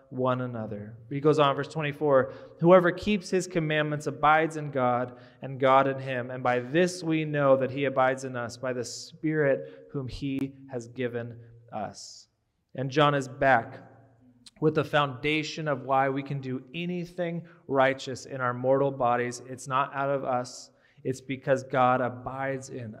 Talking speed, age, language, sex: 165 wpm, 20-39, English, male